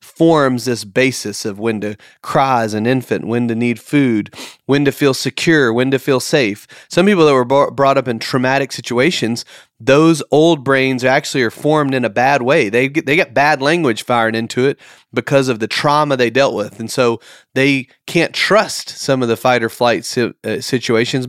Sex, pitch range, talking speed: male, 115-145 Hz, 190 wpm